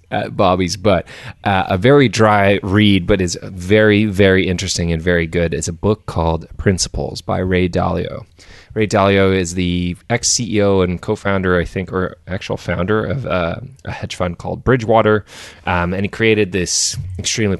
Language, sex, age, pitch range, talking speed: English, male, 20-39, 90-105 Hz, 165 wpm